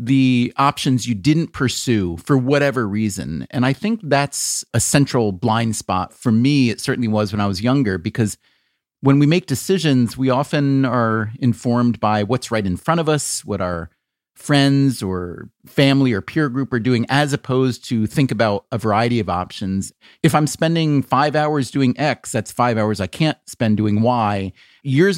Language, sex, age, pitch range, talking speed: English, male, 30-49, 110-140 Hz, 180 wpm